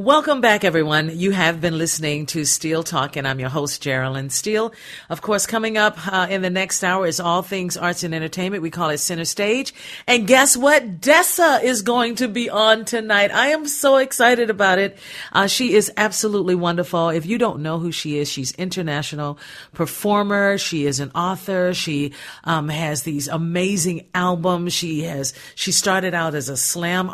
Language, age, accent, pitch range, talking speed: English, 50-69, American, 155-205 Hz, 190 wpm